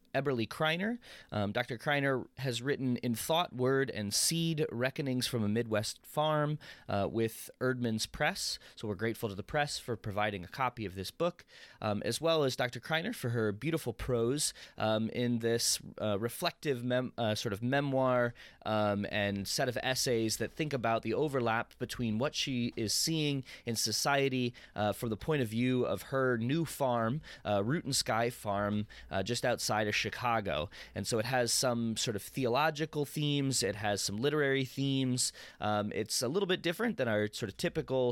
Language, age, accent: English, 20-39, American